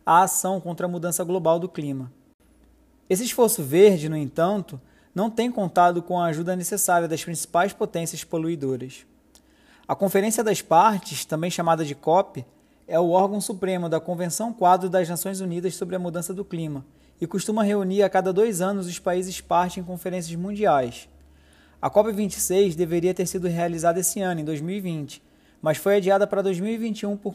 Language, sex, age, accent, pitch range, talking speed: Portuguese, male, 20-39, Brazilian, 170-205 Hz, 165 wpm